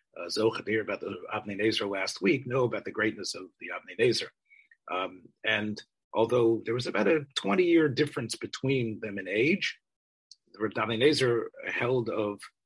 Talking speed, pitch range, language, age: 155 wpm, 105-125 Hz, English, 40-59